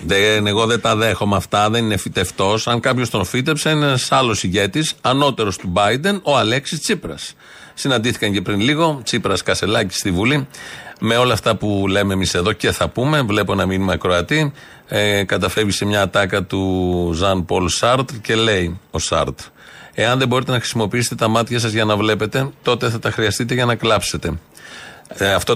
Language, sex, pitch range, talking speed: Greek, male, 105-130 Hz, 175 wpm